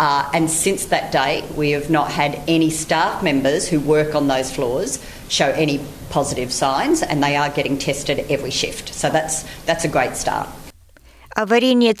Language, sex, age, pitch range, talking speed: Bulgarian, female, 50-69, 185-220 Hz, 175 wpm